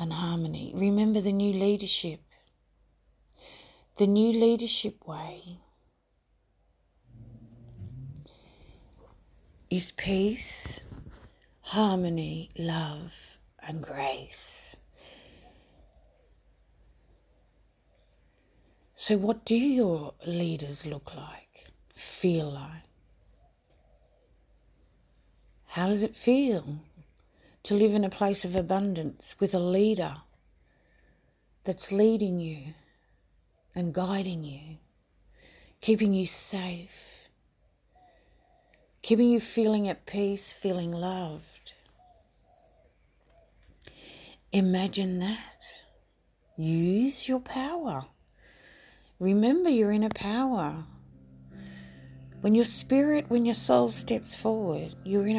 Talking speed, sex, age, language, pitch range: 80 wpm, female, 40-59, English, 135-210 Hz